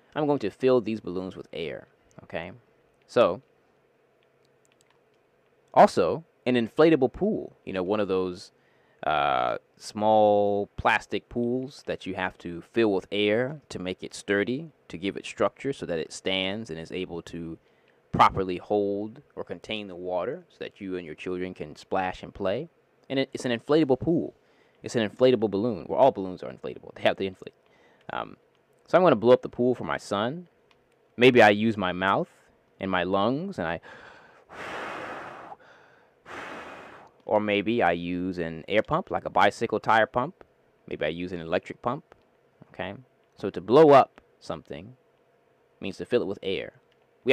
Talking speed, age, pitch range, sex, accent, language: 165 wpm, 20-39, 90-130 Hz, male, American, English